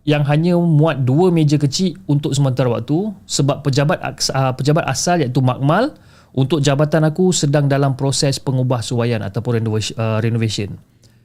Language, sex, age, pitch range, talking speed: Malay, male, 30-49, 110-145 Hz, 145 wpm